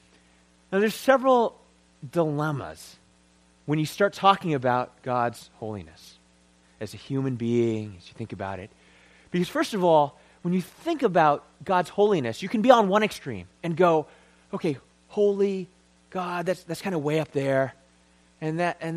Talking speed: 160 wpm